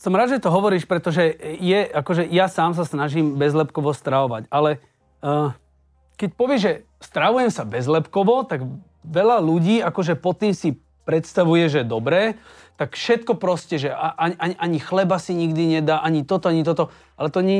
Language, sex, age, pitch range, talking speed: Slovak, male, 30-49, 145-190 Hz, 170 wpm